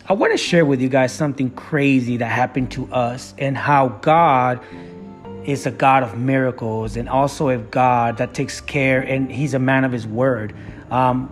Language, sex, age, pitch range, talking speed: English, male, 30-49, 125-145 Hz, 190 wpm